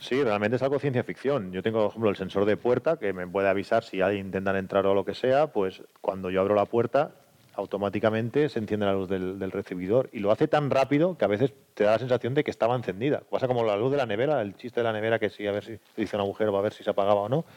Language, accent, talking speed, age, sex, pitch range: Spanish, Spanish, 295 wpm, 40-59, male, 100-125 Hz